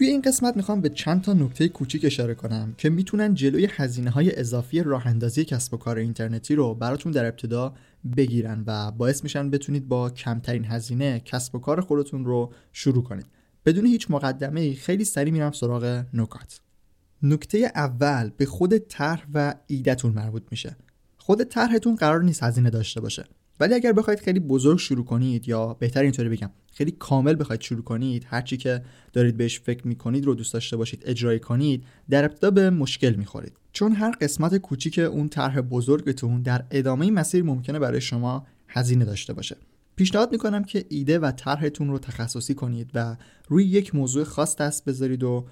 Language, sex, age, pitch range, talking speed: Persian, male, 20-39, 120-155 Hz, 175 wpm